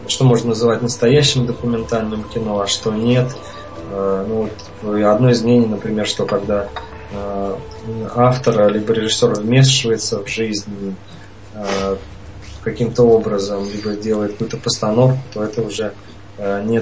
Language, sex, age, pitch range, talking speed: Russian, male, 20-39, 100-120 Hz, 115 wpm